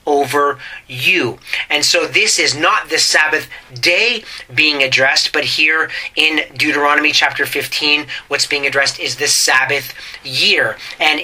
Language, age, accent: English, 30-49, American